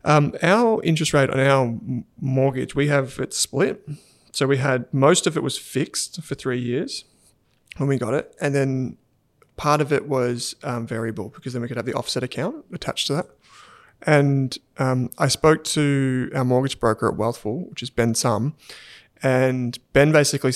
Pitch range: 120-145 Hz